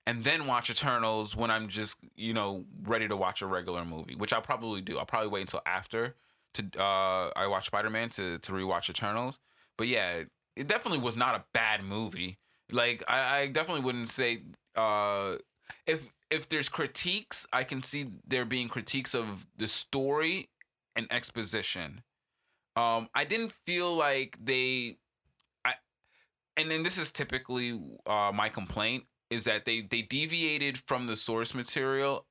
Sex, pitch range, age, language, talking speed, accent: male, 105-135 Hz, 20-39, English, 165 wpm, American